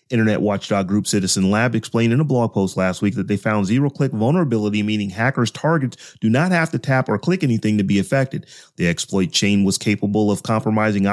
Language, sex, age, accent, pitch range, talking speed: English, male, 30-49, American, 105-140 Hz, 205 wpm